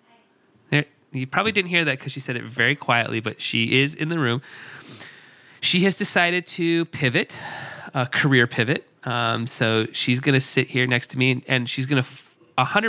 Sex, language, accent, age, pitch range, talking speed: male, English, American, 30-49, 115-145 Hz, 180 wpm